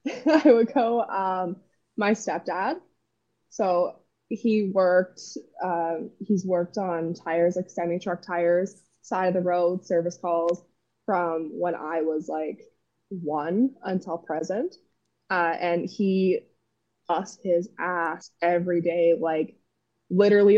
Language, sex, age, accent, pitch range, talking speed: English, female, 20-39, American, 165-210 Hz, 120 wpm